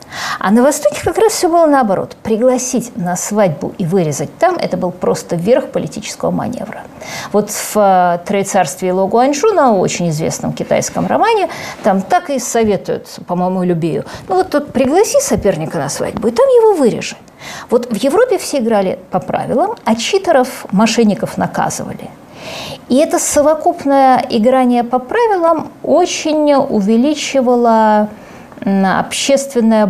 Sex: female